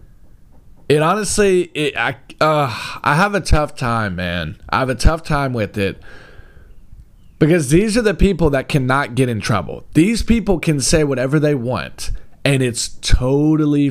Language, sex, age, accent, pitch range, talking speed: English, male, 20-39, American, 130-200 Hz, 155 wpm